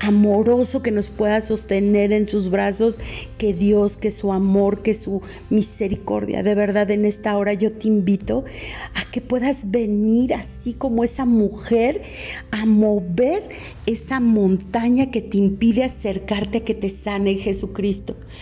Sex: female